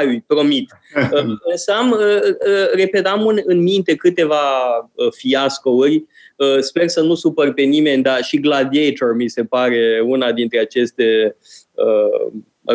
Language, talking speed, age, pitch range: Romanian, 100 wpm, 20-39, 125-170 Hz